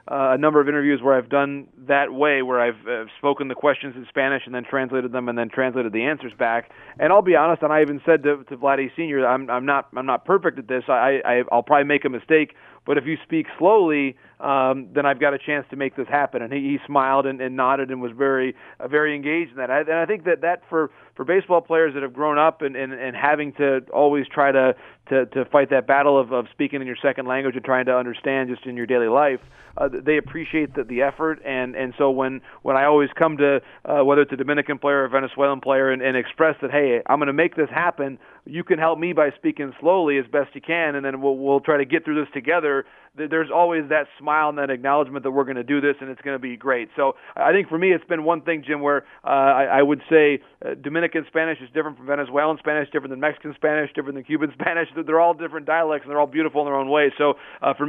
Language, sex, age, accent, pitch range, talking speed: English, male, 40-59, American, 135-155 Hz, 260 wpm